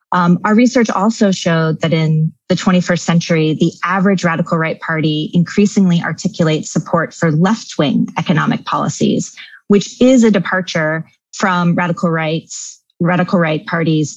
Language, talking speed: English, 130 wpm